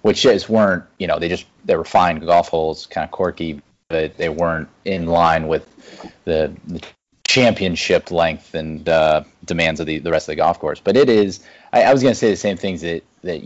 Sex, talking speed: male, 225 wpm